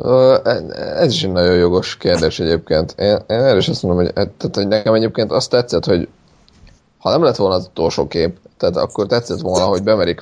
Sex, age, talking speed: male, 20-39, 200 wpm